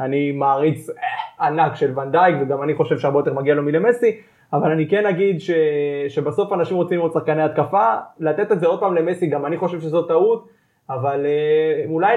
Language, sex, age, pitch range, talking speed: English, male, 20-39, 150-200 Hz, 180 wpm